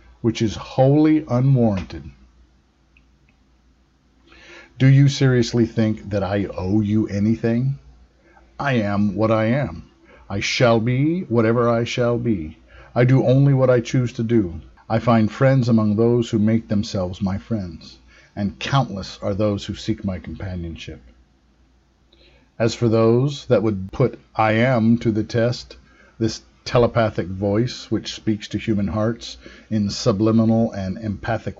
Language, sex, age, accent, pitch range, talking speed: English, male, 50-69, American, 95-120 Hz, 140 wpm